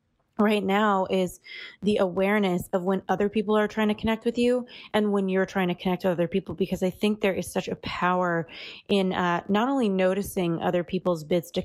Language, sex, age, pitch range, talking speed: English, female, 20-39, 180-195 Hz, 210 wpm